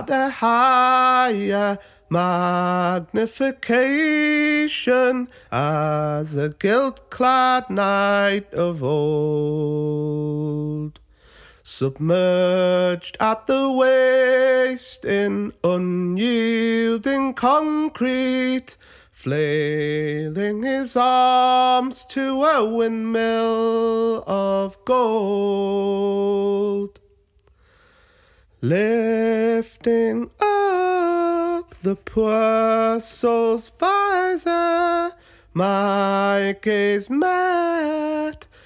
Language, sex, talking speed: English, male, 55 wpm